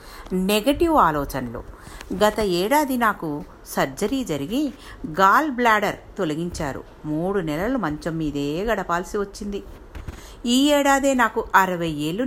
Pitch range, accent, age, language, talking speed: 145-215 Hz, native, 50-69, Telugu, 105 wpm